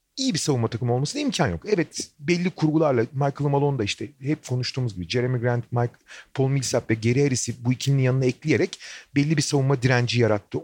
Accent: native